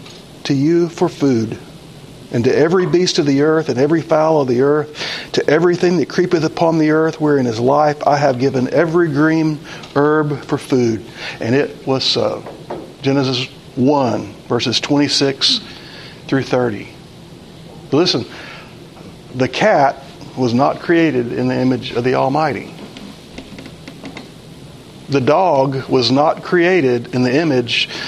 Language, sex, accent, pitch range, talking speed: English, male, American, 130-170 Hz, 140 wpm